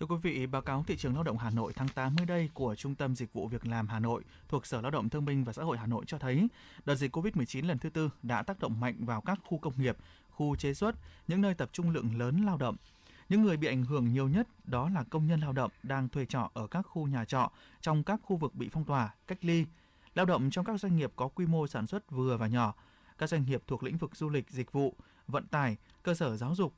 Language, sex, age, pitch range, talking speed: Vietnamese, male, 20-39, 125-170 Hz, 275 wpm